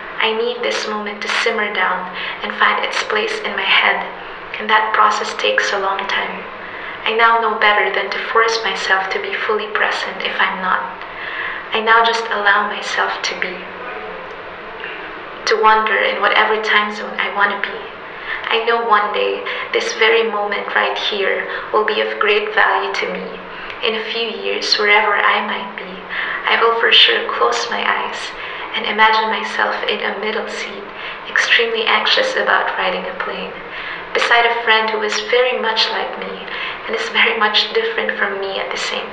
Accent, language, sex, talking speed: Filipino, English, female, 180 wpm